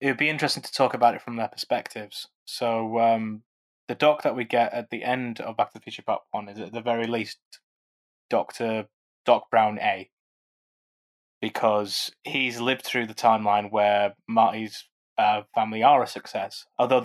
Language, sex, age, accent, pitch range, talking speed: English, male, 20-39, British, 110-125 Hz, 180 wpm